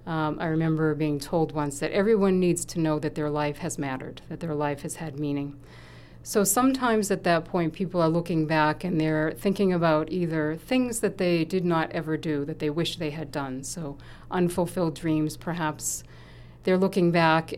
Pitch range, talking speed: 150-170 Hz, 190 wpm